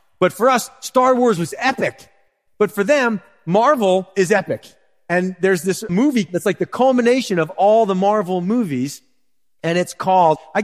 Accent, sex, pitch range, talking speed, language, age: American, male, 145-200 Hz, 170 wpm, English, 30-49